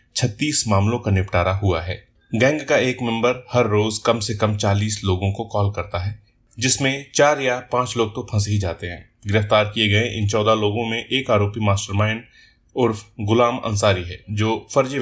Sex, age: male, 30-49